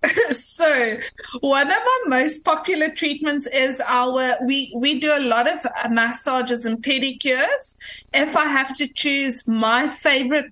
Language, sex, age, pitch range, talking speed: English, female, 30-49, 230-275 Hz, 145 wpm